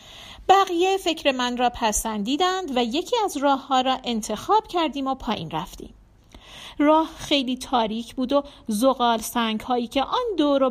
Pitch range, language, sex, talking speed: 230-305 Hz, Persian, female, 150 wpm